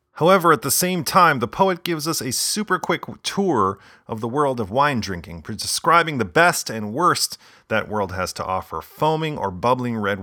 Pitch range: 95-130 Hz